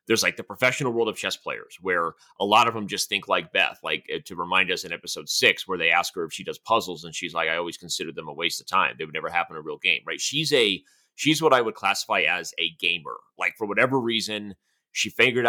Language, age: English, 30-49